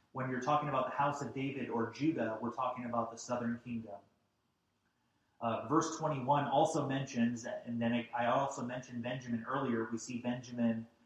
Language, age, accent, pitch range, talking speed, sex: English, 30-49, American, 115-135 Hz, 170 wpm, male